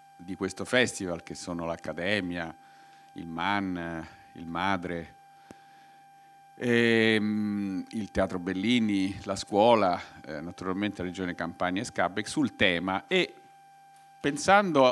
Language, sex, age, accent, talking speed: Italian, male, 50-69, native, 100 wpm